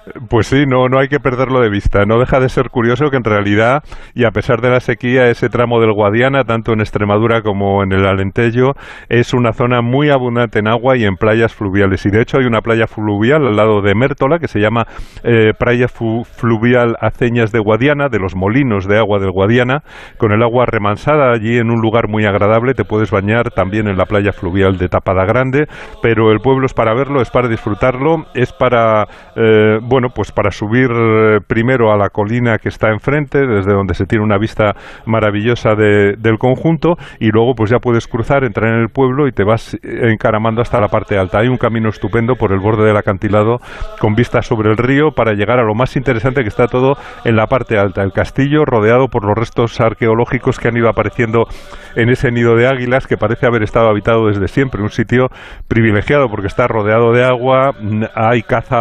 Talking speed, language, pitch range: 210 wpm, Spanish, 105-125 Hz